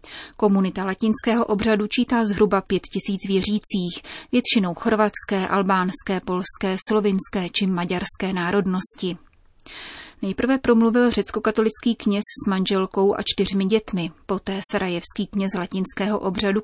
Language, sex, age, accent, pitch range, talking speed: Czech, female, 30-49, native, 190-215 Hz, 110 wpm